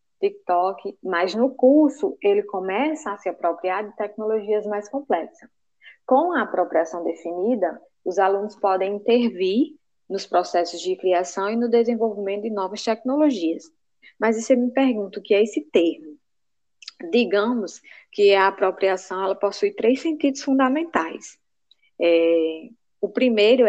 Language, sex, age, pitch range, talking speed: Portuguese, female, 20-39, 190-250 Hz, 130 wpm